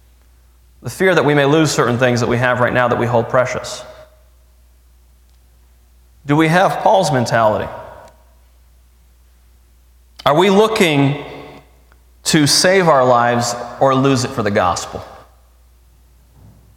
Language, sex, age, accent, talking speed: English, male, 30-49, American, 125 wpm